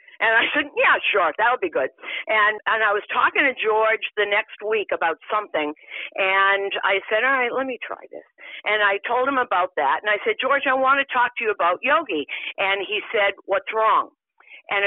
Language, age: English, 50-69